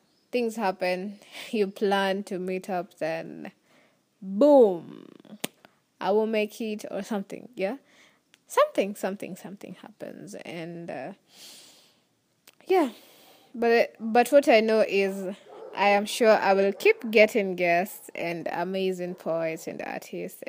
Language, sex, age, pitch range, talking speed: English, female, 20-39, 190-230 Hz, 125 wpm